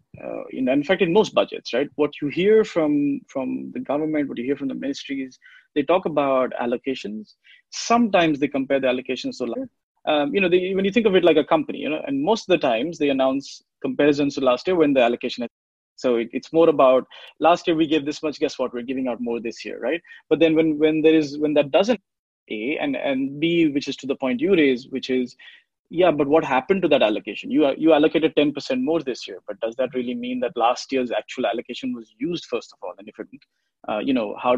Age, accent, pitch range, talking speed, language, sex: 20-39, Indian, 125-170 Hz, 235 wpm, English, male